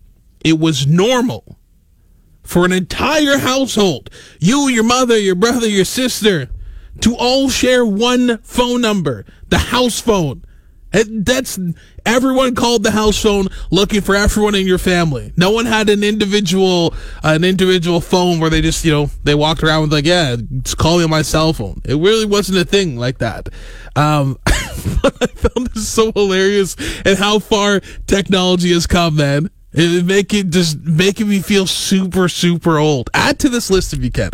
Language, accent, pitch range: English, American, 150-205 Hz